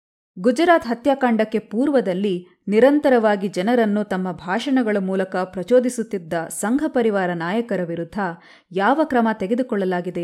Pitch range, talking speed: 180-240 Hz, 95 wpm